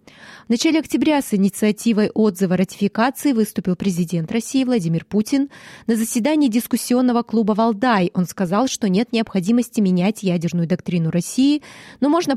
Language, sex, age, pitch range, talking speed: Russian, female, 20-39, 170-235 Hz, 135 wpm